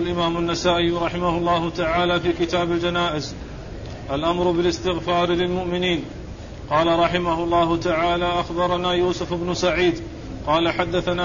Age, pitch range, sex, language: 40-59, 170-180 Hz, male, Arabic